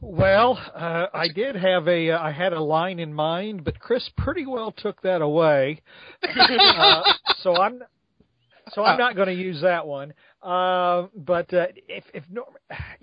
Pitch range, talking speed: 150-190 Hz, 170 wpm